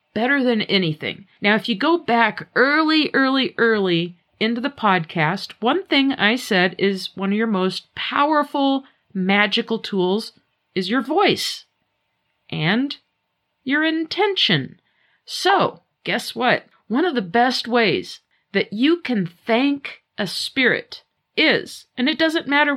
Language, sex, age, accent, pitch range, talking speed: English, female, 50-69, American, 200-265 Hz, 135 wpm